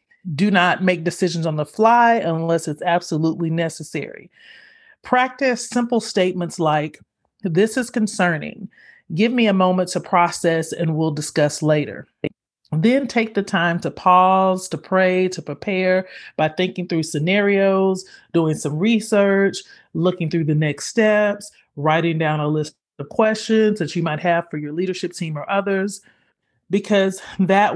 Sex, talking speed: male, 145 wpm